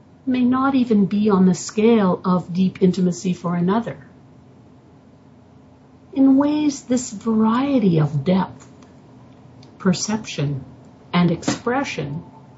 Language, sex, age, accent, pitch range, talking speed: English, female, 50-69, American, 130-195 Hz, 100 wpm